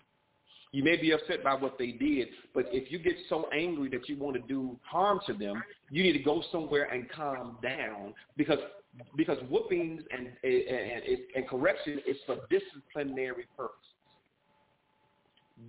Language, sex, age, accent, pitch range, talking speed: English, male, 40-59, American, 150-230 Hz, 160 wpm